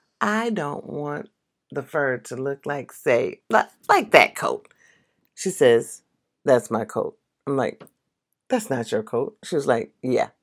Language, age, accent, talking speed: English, 40-59, American, 160 wpm